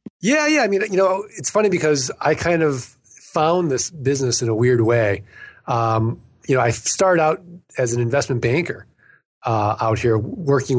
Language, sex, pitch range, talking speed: English, male, 120-165 Hz, 185 wpm